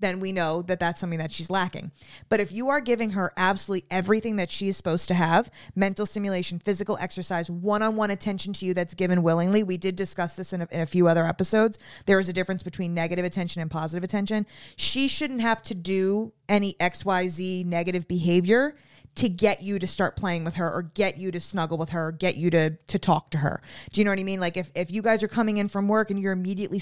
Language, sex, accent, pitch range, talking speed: English, female, American, 170-200 Hz, 235 wpm